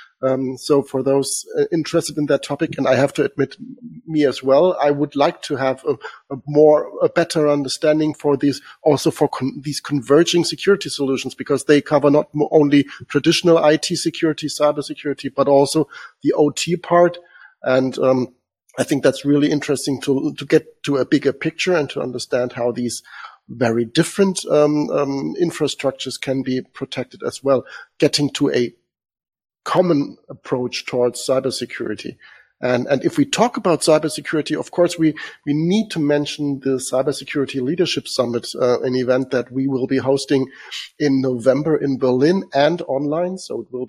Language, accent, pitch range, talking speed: English, German, 130-155 Hz, 170 wpm